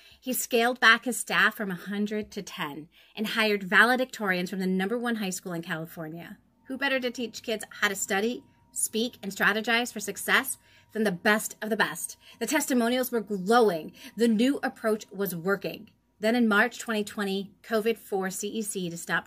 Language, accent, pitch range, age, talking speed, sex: English, American, 195-240 Hz, 30-49, 175 wpm, female